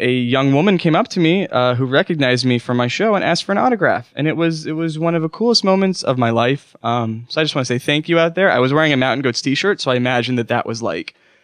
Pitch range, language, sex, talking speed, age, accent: 115-155 Hz, English, male, 300 wpm, 10-29, American